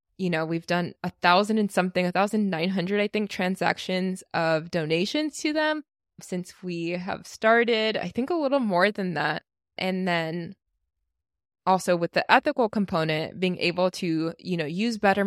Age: 20-39